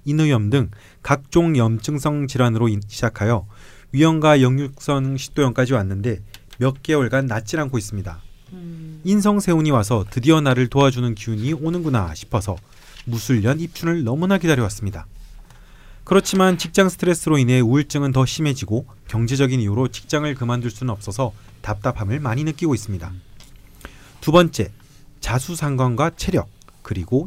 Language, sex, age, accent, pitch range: Korean, male, 30-49, native, 110-155 Hz